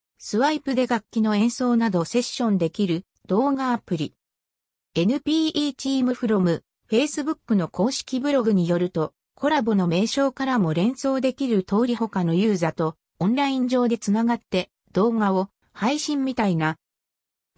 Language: Japanese